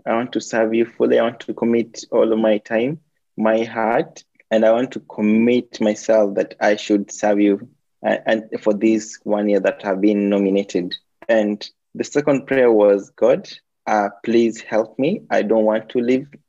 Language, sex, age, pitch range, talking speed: English, male, 20-39, 105-120 Hz, 190 wpm